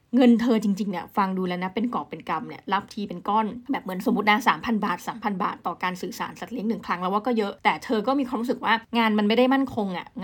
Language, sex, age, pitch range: Thai, female, 20-39, 200-245 Hz